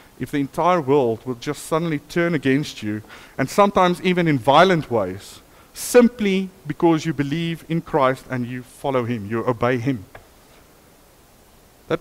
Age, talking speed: 50-69, 150 wpm